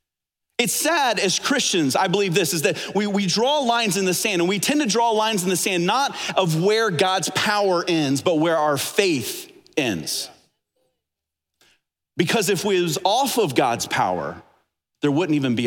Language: English